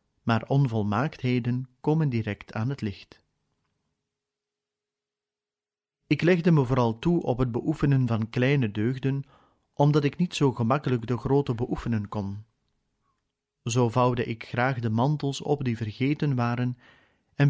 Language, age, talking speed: Dutch, 40-59, 130 wpm